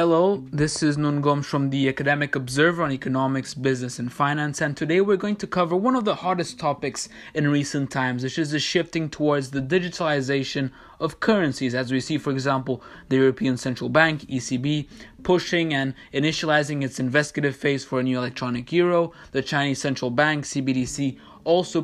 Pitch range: 140-175 Hz